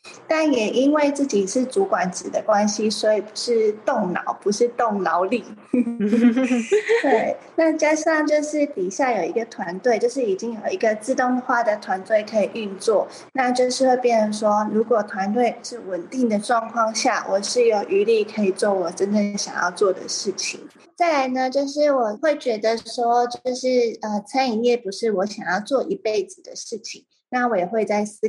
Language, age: Chinese, 20-39